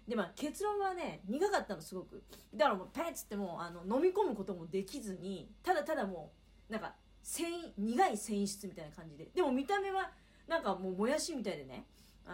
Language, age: Japanese, 40-59